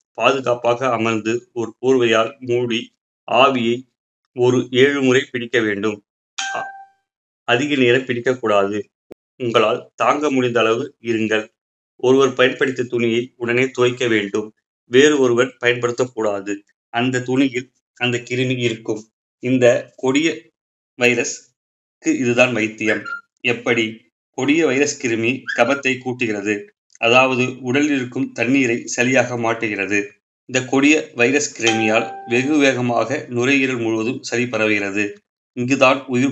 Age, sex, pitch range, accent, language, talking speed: 30-49, male, 115-130 Hz, native, Tamil, 100 wpm